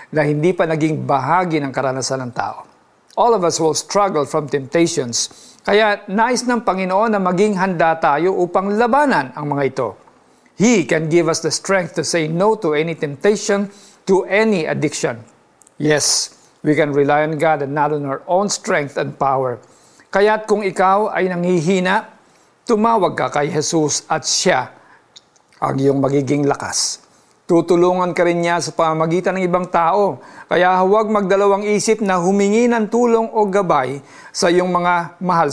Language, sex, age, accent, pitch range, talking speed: Filipino, male, 50-69, native, 145-190 Hz, 160 wpm